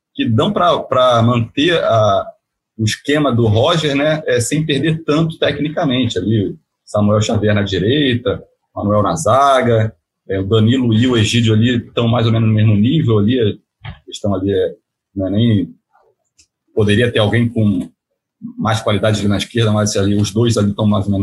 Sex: male